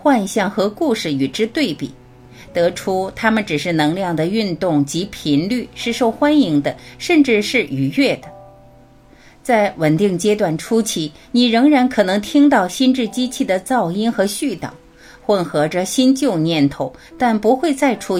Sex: female